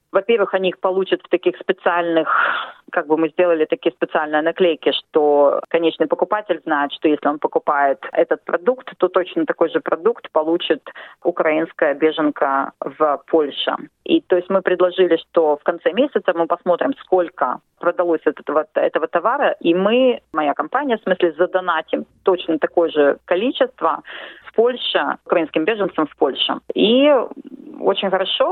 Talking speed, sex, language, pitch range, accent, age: 145 wpm, female, Russian, 160-205 Hz, native, 30-49